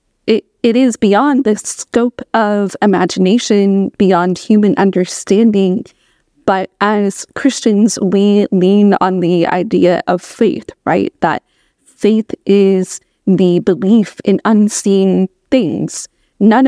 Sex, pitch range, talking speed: female, 190-220 Hz, 110 wpm